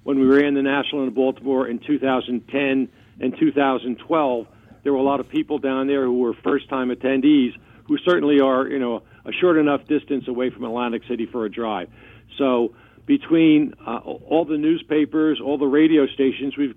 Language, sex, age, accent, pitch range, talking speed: English, male, 60-79, American, 125-145 Hz, 185 wpm